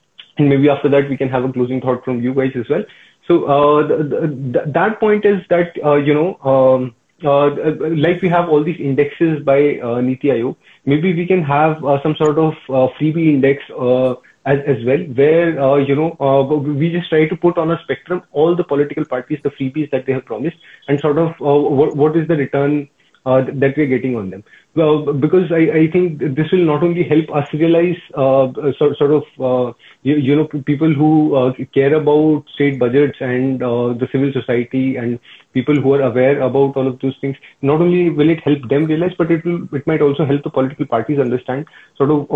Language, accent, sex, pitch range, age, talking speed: English, Indian, male, 130-155 Hz, 30-49, 220 wpm